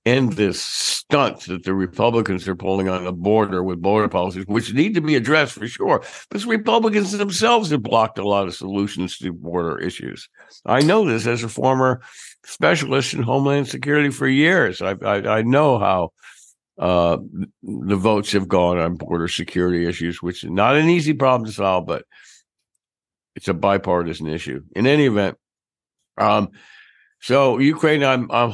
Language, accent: English, American